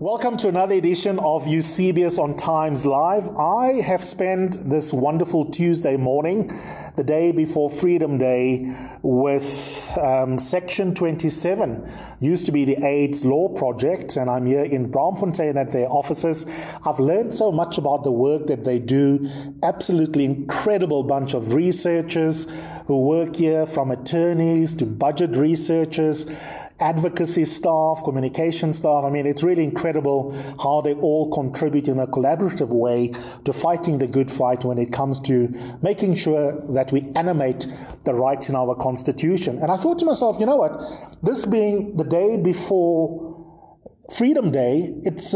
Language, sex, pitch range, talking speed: English, male, 140-175 Hz, 155 wpm